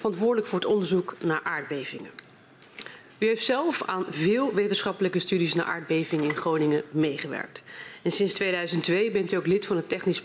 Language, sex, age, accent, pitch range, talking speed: Dutch, female, 30-49, Dutch, 165-210 Hz, 165 wpm